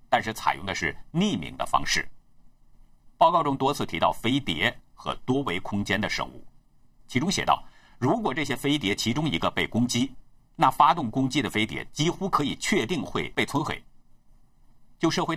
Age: 50-69